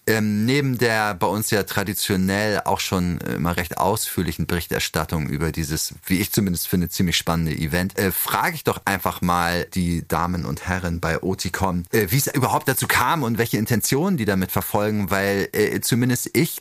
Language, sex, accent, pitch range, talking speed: German, male, German, 90-110 Hz, 180 wpm